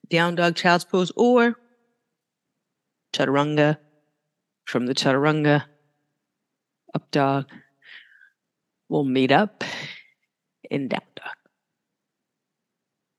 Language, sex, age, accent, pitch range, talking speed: English, female, 30-49, American, 155-210 Hz, 75 wpm